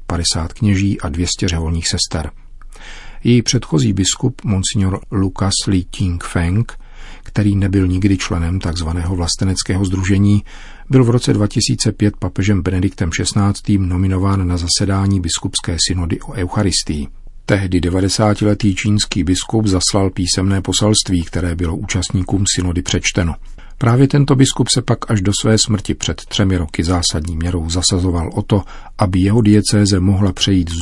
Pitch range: 90-105 Hz